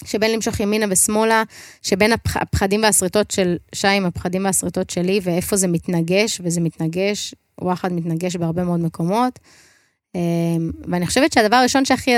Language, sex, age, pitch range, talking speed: Hebrew, female, 20-39, 170-215 Hz, 140 wpm